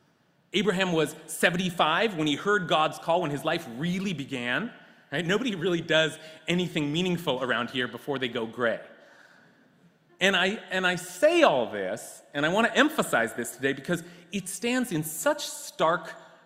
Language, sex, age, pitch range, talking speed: English, male, 30-49, 145-215 Hz, 155 wpm